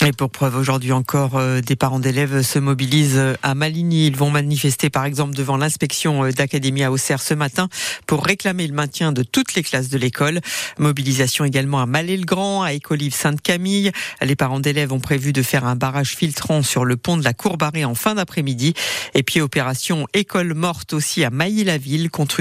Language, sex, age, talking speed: French, female, 50-69, 180 wpm